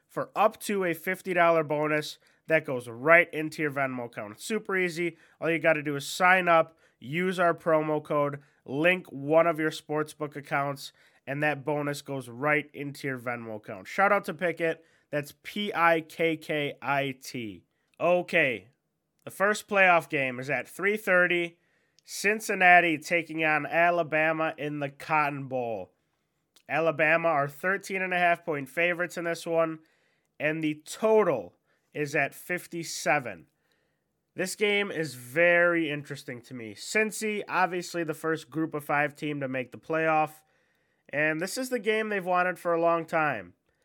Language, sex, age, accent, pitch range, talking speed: English, male, 20-39, American, 145-175 Hz, 160 wpm